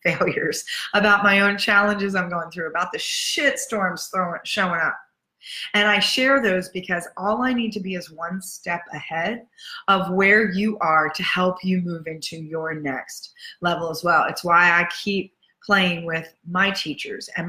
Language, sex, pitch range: English, female, 170-215 Hz